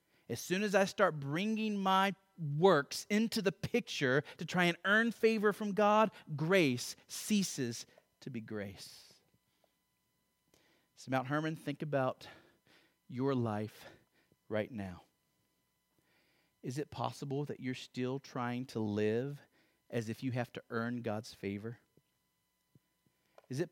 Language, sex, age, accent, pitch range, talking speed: English, male, 30-49, American, 110-150 Hz, 130 wpm